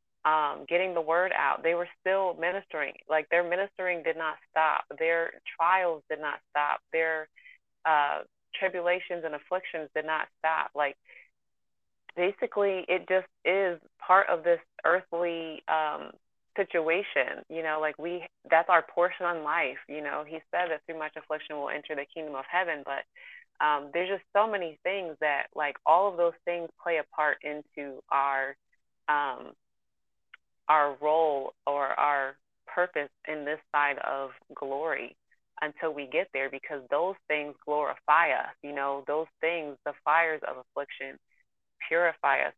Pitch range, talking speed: 145-175 Hz, 155 wpm